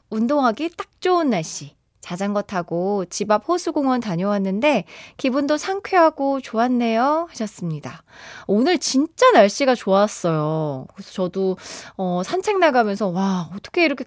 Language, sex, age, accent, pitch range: Korean, female, 20-39, native, 195-300 Hz